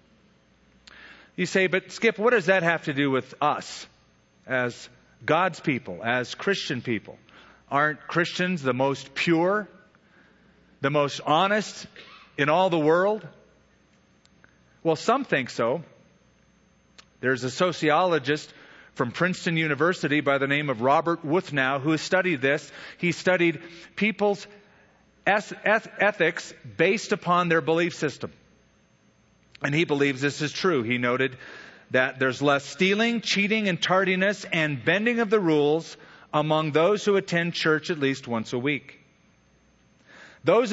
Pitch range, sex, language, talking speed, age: 145-190 Hz, male, English, 135 wpm, 40-59